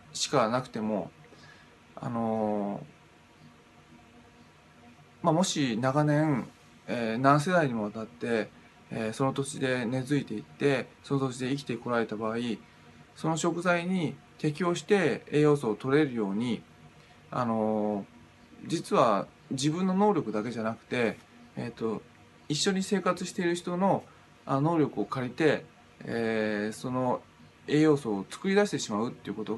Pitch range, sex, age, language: 110-150 Hz, male, 20-39, Japanese